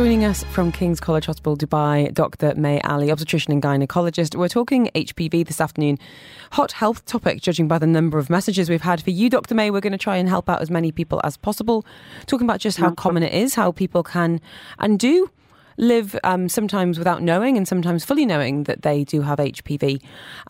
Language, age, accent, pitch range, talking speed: English, 20-39, British, 150-205 Hz, 210 wpm